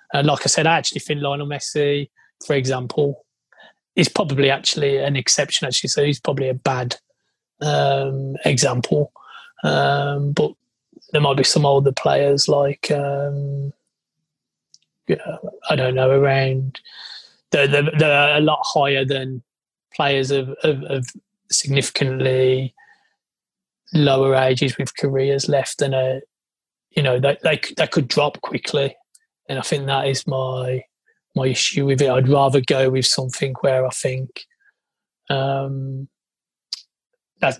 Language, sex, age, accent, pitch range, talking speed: English, male, 20-39, British, 135-155 Hz, 140 wpm